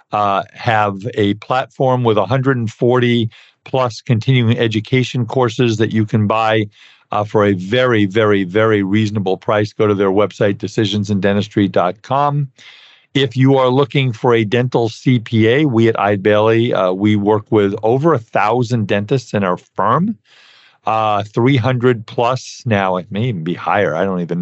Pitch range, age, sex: 105-120 Hz, 50-69, male